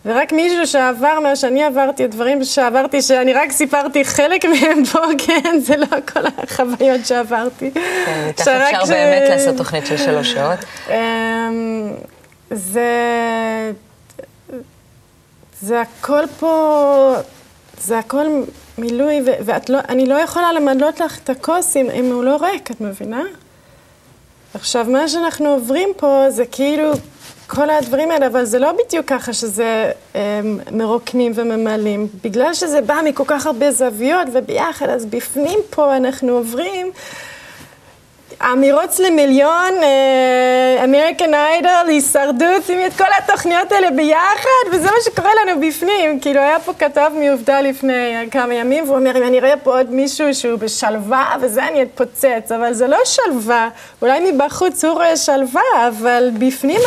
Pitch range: 250-310 Hz